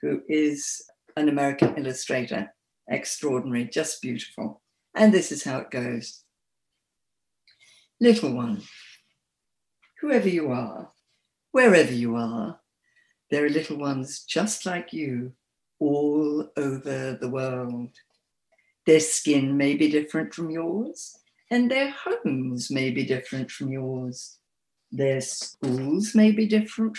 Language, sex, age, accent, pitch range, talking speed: English, female, 60-79, British, 130-215 Hz, 120 wpm